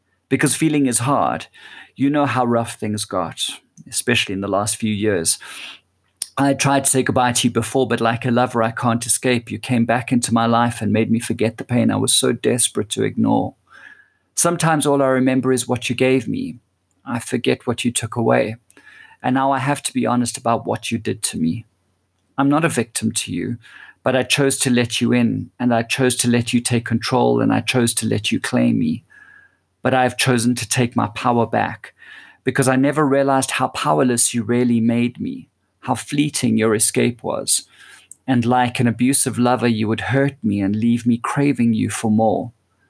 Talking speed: 205 wpm